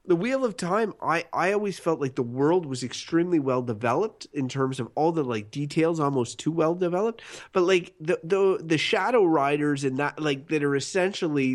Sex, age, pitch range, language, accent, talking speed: male, 30-49, 130-165 Hz, English, American, 190 wpm